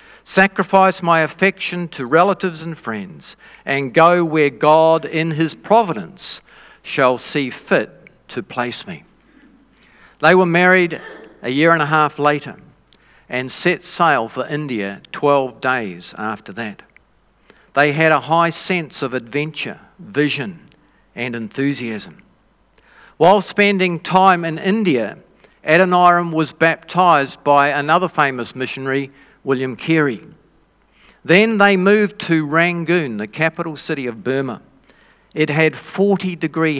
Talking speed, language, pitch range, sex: 120 wpm, English, 135-175 Hz, male